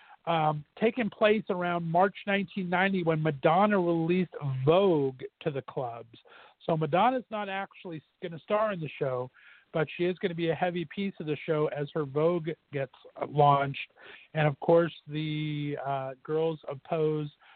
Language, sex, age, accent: English, male, 50-69, American